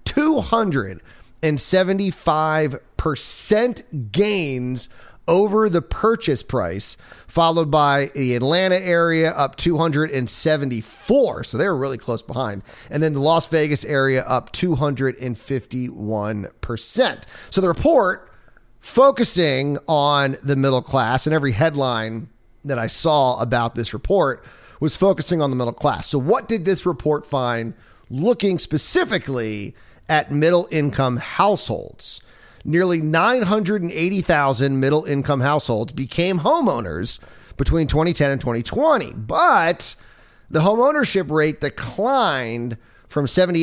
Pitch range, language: 125-165 Hz, English